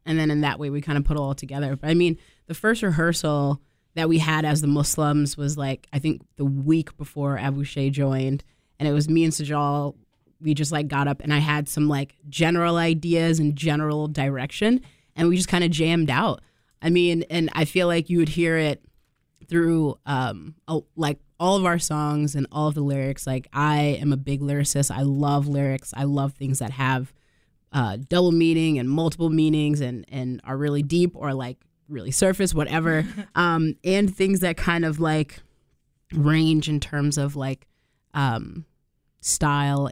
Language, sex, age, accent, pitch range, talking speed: English, female, 20-39, American, 140-160 Hz, 190 wpm